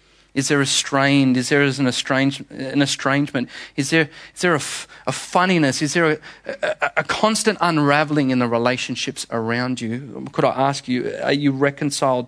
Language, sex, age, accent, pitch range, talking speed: English, male, 30-49, Australian, 130-170 Hz, 170 wpm